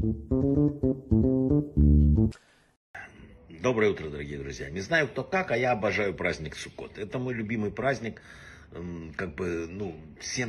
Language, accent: Russian, native